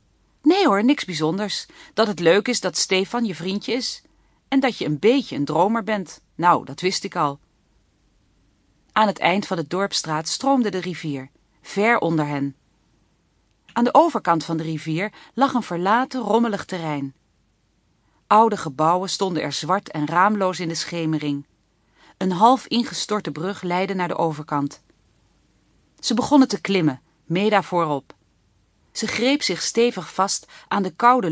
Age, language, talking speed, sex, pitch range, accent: 40-59, Dutch, 155 wpm, female, 155-215 Hz, Dutch